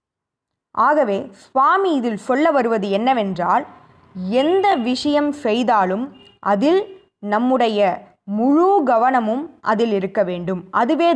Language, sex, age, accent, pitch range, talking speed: Tamil, female, 20-39, native, 200-270 Hz, 90 wpm